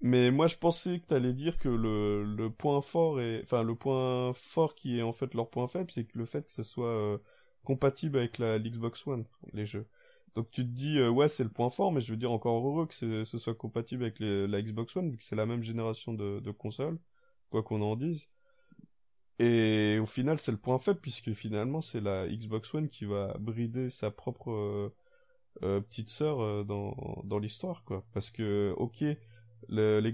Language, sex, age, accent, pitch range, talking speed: French, male, 20-39, French, 105-135 Hz, 215 wpm